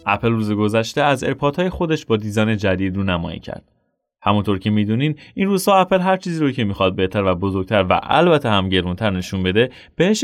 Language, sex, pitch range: Persian, male, 100-140 Hz